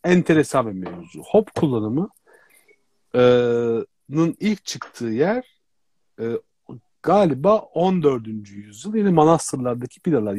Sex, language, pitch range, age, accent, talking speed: male, Turkish, 115-180 Hz, 50-69, native, 80 wpm